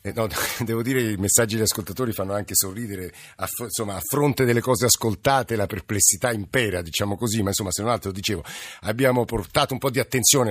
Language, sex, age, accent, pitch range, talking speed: Italian, male, 50-69, native, 100-125 Hz, 200 wpm